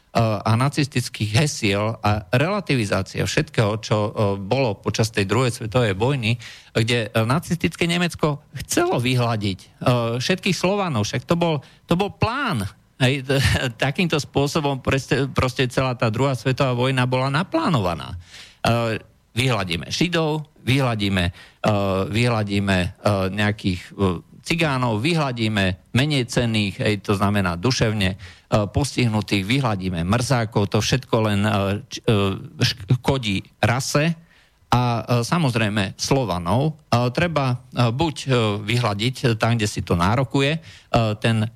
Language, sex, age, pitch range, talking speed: Slovak, male, 50-69, 105-135 Hz, 95 wpm